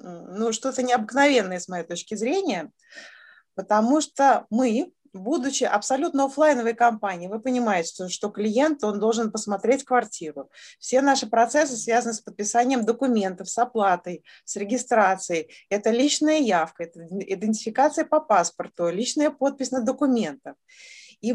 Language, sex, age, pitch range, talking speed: Russian, female, 20-39, 195-275 Hz, 130 wpm